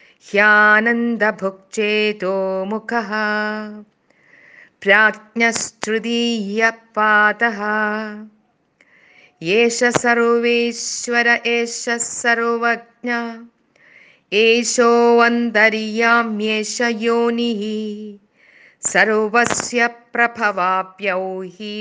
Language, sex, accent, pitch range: Malayalam, female, native, 215-235 Hz